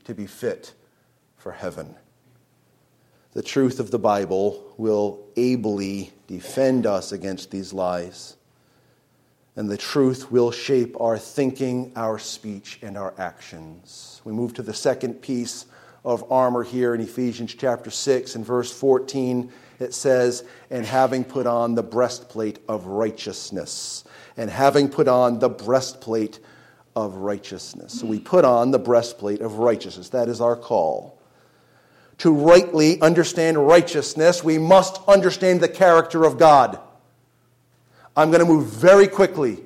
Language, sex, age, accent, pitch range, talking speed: English, male, 40-59, American, 115-165 Hz, 140 wpm